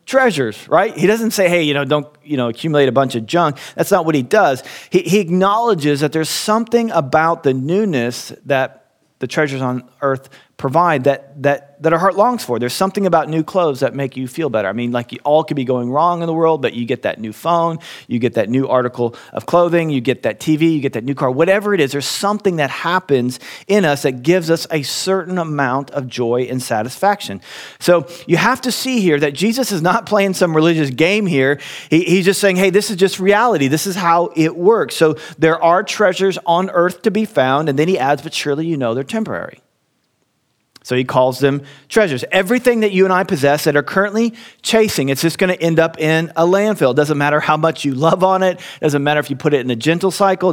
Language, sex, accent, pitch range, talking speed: English, male, American, 135-185 Hz, 235 wpm